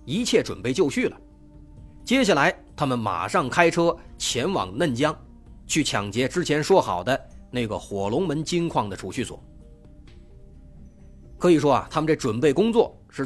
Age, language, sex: 30-49, Chinese, male